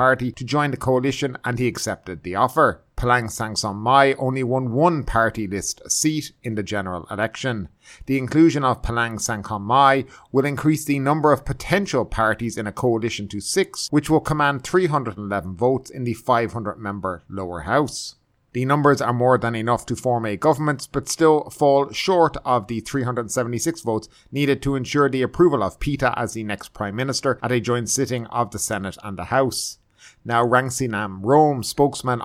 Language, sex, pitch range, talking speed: English, male, 110-140 Hz, 175 wpm